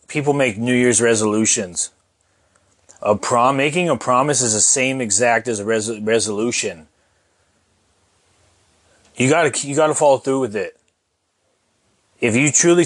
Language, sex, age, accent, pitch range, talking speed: English, male, 30-49, American, 110-130 Hz, 145 wpm